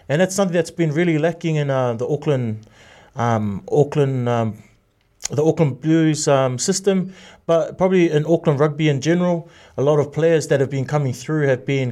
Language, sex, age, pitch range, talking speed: English, male, 30-49, 120-160 Hz, 185 wpm